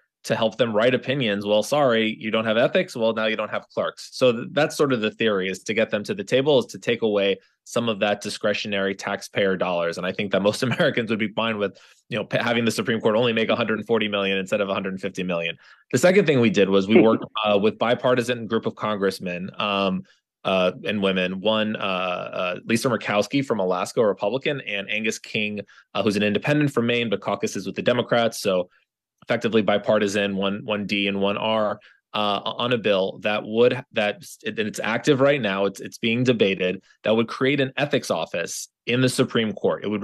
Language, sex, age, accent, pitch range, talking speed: English, male, 20-39, American, 100-125 Hz, 215 wpm